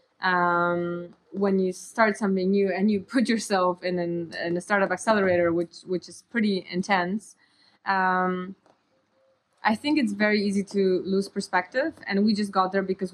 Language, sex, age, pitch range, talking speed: English, female, 20-39, 175-200 Hz, 165 wpm